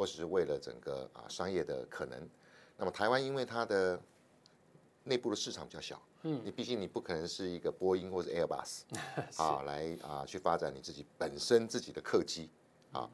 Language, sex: Chinese, male